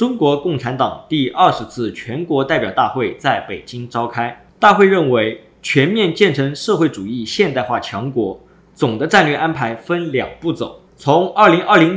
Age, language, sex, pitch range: 20-39, Chinese, male, 130-190 Hz